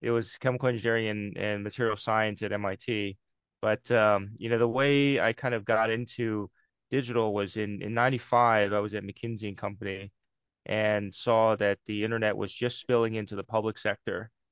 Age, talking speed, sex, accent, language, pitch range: 20-39, 180 wpm, male, American, English, 105-120 Hz